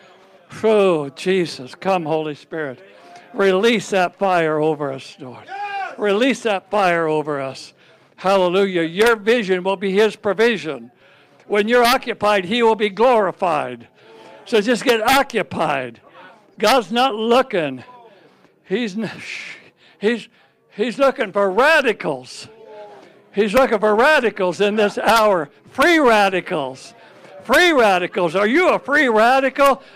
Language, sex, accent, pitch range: English, male, American, 195-275 Hz